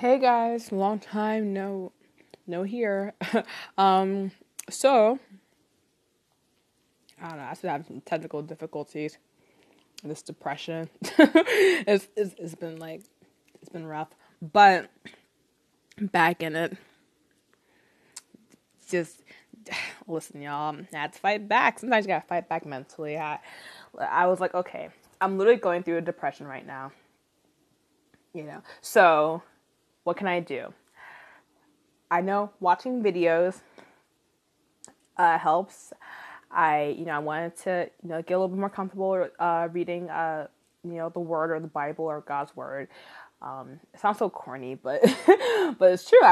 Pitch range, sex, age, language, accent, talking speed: 155-195 Hz, female, 20-39, English, American, 135 wpm